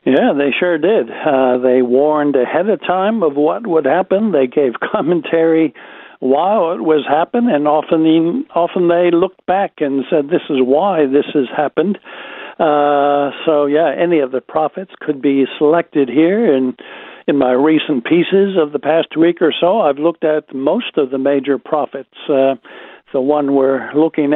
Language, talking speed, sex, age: English, 170 wpm, male, 60-79